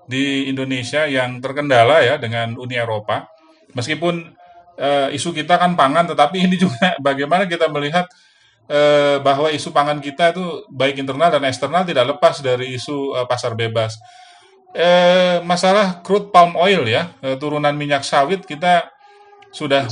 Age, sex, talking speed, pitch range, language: 30-49, male, 150 wpm, 135-180 Hz, Indonesian